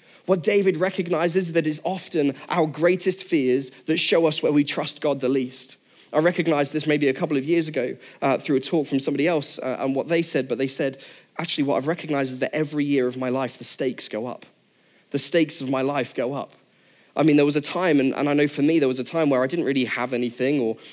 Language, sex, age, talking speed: English, male, 10-29, 245 wpm